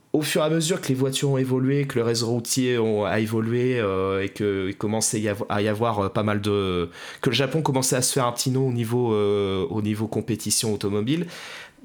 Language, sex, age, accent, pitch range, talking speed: French, male, 20-39, French, 105-140 Hz, 230 wpm